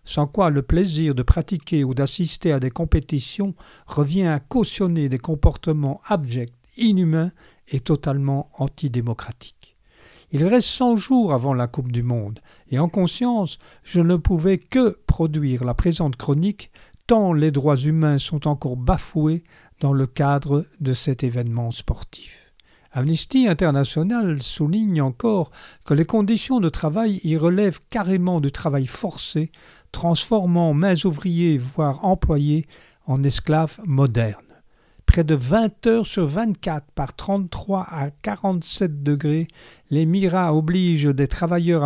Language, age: French, 50-69